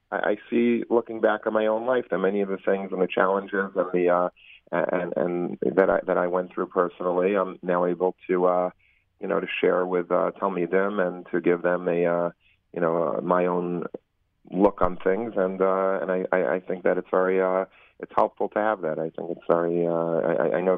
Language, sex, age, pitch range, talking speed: English, male, 30-49, 85-95 Hz, 230 wpm